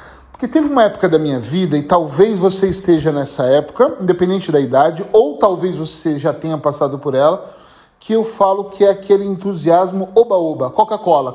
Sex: male